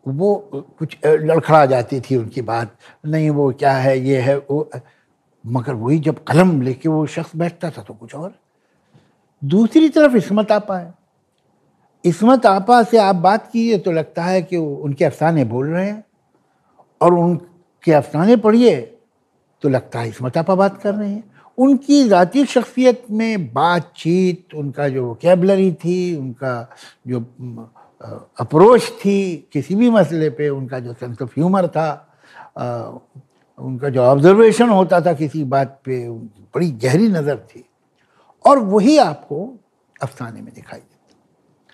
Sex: male